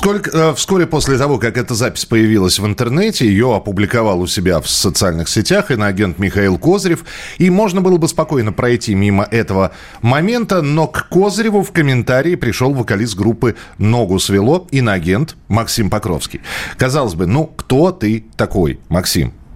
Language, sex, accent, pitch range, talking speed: Russian, male, native, 105-155 Hz, 150 wpm